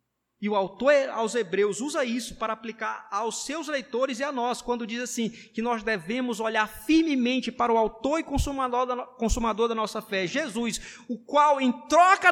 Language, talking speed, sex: Portuguese, 175 wpm, male